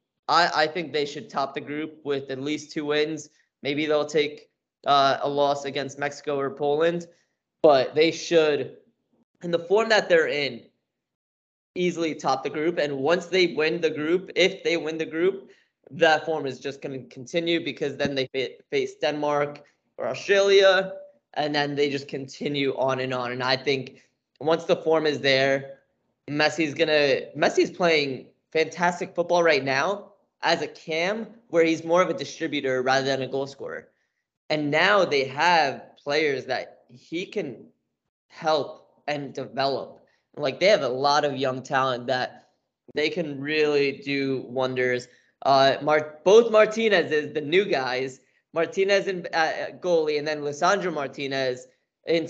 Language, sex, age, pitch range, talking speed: English, male, 20-39, 135-170 Hz, 160 wpm